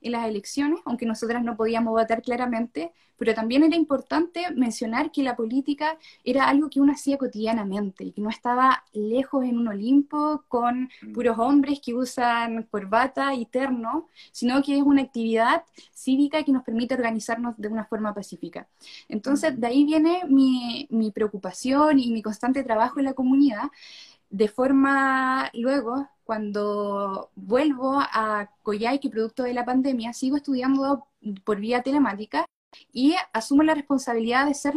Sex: female